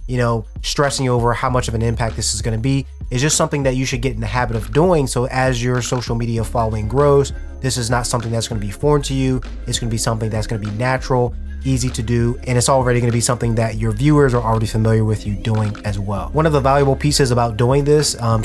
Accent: American